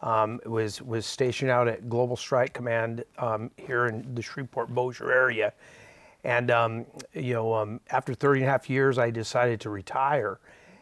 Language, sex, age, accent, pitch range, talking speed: English, male, 40-59, American, 110-125 Hz, 165 wpm